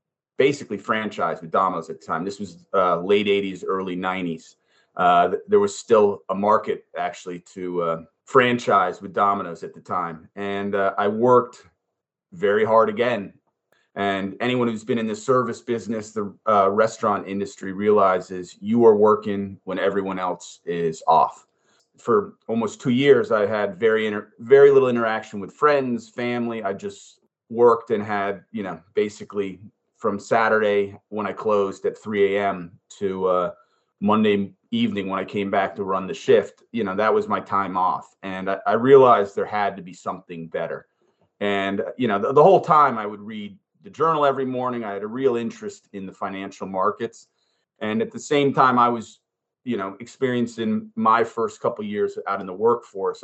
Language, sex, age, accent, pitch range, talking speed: English, male, 30-49, American, 100-130 Hz, 180 wpm